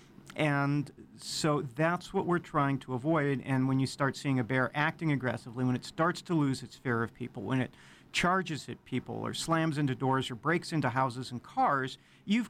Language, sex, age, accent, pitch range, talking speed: English, male, 40-59, American, 125-160 Hz, 200 wpm